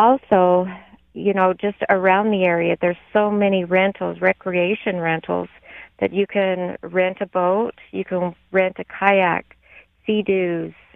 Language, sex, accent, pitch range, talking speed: English, female, American, 185-210 Hz, 140 wpm